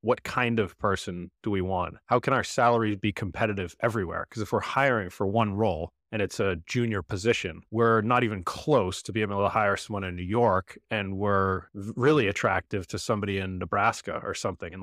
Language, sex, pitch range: English, male, 90-105 Hz